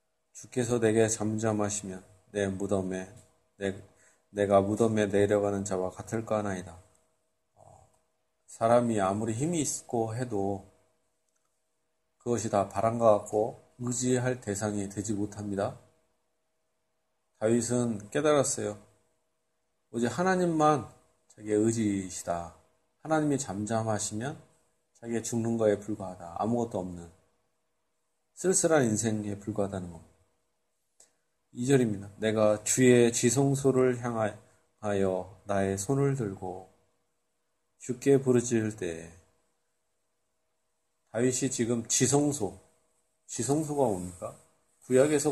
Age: 40-59